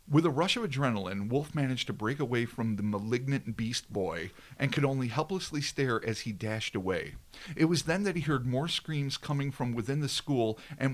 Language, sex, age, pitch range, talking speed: English, male, 50-69, 110-145 Hz, 210 wpm